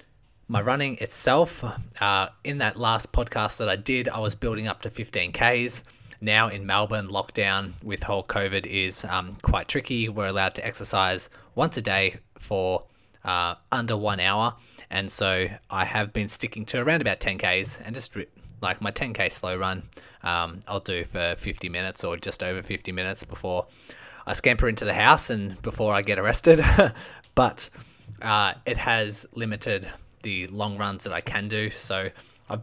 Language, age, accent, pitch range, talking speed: English, 20-39, Australian, 95-115 Hz, 170 wpm